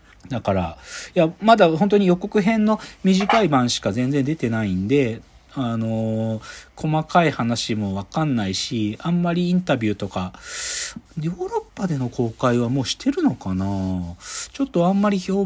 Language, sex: Japanese, male